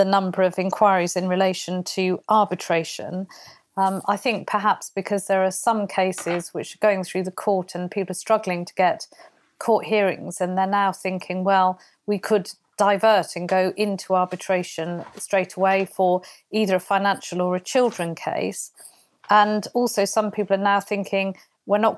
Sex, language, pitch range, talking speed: female, English, 180-210 Hz, 165 wpm